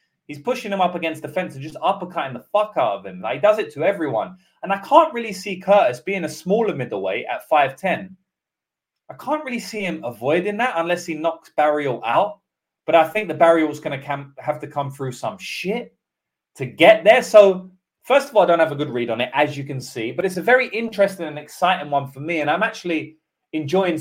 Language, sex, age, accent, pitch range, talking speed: English, male, 20-39, British, 135-190 Hz, 230 wpm